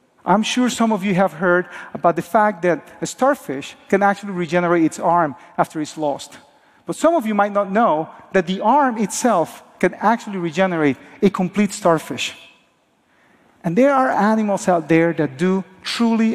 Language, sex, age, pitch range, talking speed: German, male, 40-59, 170-225 Hz, 175 wpm